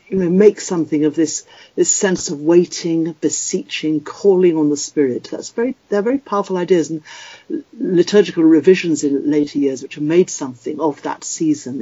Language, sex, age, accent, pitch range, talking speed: English, female, 60-79, British, 150-200 Hz, 175 wpm